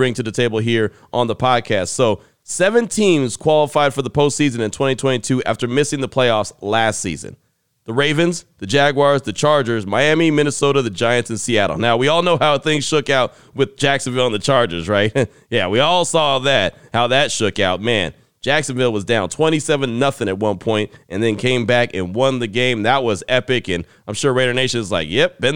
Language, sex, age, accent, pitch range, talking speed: English, male, 30-49, American, 115-155 Hz, 200 wpm